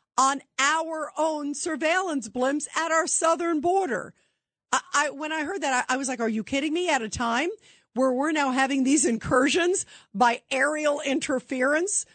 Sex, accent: female, American